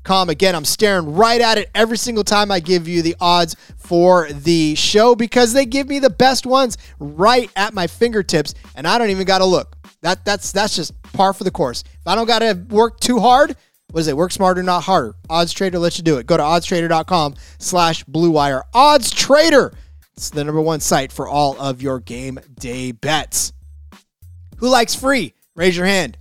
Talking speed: 205 wpm